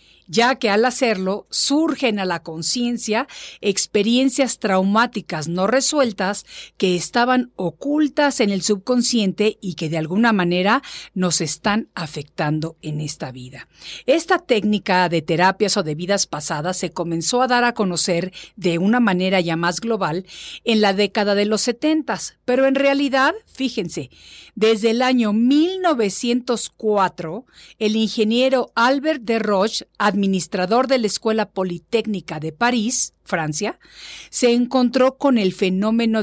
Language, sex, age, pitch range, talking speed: Spanish, female, 50-69, 180-240 Hz, 135 wpm